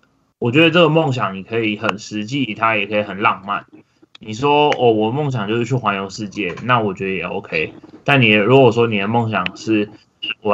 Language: Chinese